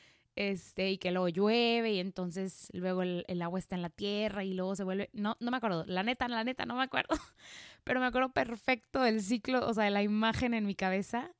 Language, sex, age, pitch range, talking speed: Spanish, female, 20-39, 195-245 Hz, 230 wpm